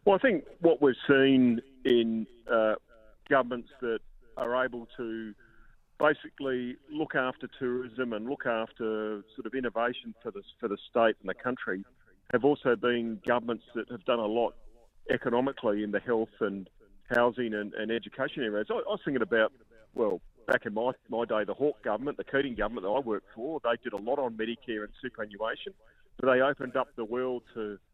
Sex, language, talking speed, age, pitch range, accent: male, English, 185 wpm, 40-59, 115-140 Hz, Australian